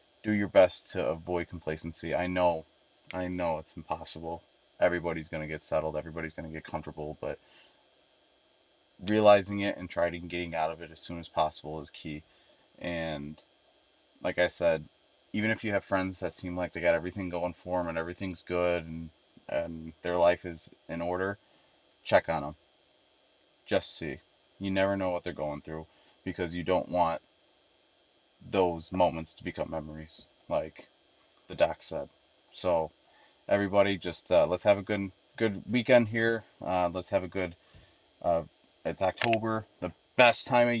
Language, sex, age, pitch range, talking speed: English, male, 30-49, 85-100 Hz, 170 wpm